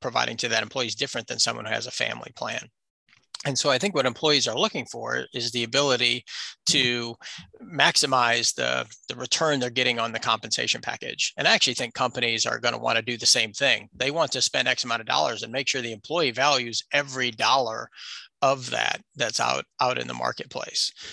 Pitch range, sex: 120-140 Hz, male